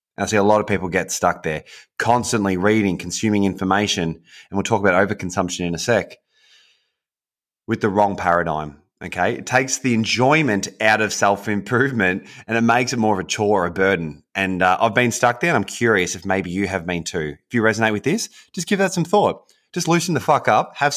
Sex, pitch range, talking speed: male, 95-115 Hz, 215 wpm